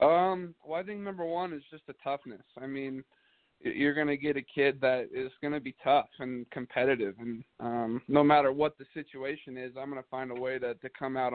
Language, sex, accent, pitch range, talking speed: English, male, American, 125-140 Hz, 235 wpm